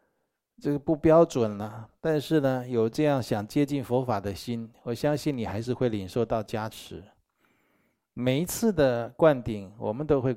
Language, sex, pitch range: Chinese, male, 105-130 Hz